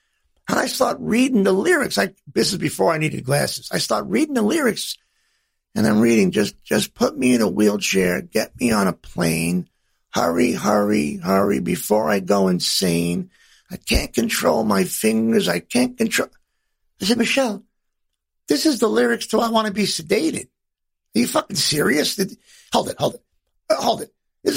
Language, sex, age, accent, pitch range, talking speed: English, male, 50-69, American, 155-240 Hz, 175 wpm